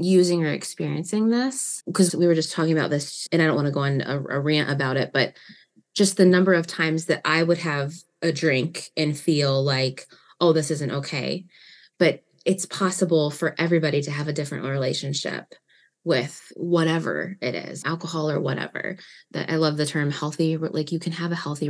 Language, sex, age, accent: English, female, 20-39, American